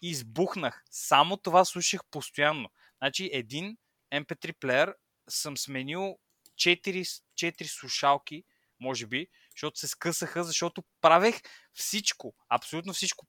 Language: Bulgarian